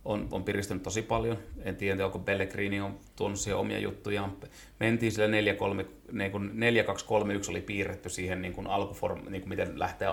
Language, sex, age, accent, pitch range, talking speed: Finnish, male, 30-49, native, 90-105 Hz, 135 wpm